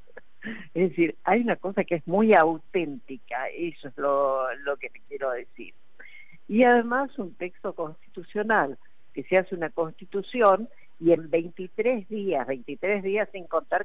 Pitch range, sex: 150-200 Hz, female